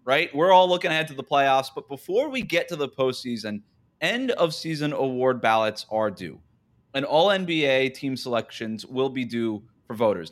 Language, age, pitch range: English, 20-39, 115-150 Hz